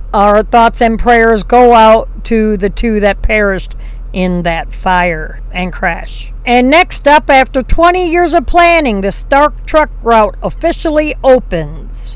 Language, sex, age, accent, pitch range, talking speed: English, female, 50-69, American, 225-285 Hz, 150 wpm